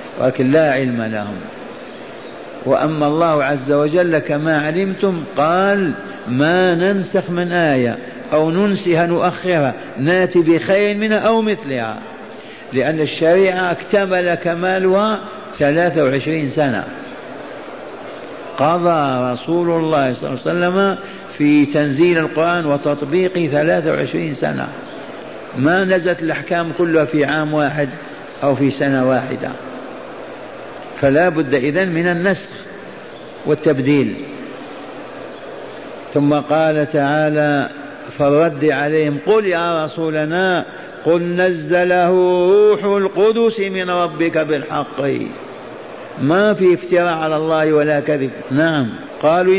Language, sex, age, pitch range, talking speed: Arabic, male, 60-79, 150-185 Hz, 100 wpm